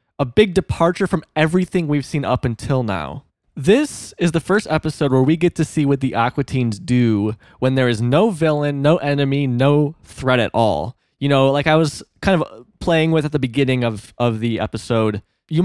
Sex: male